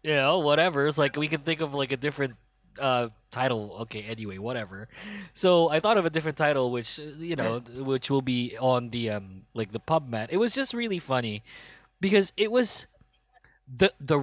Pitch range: 125-180 Hz